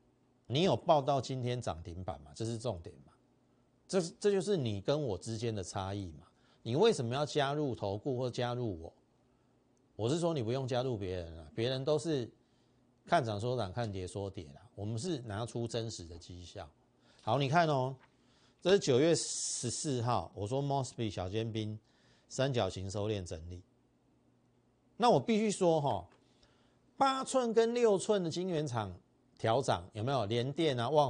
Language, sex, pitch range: Chinese, male, 100-135 Hz